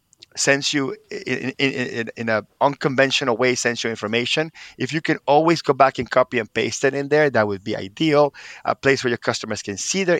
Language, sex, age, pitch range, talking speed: English, male, 30-49, 120-150 Hz, 220 wpm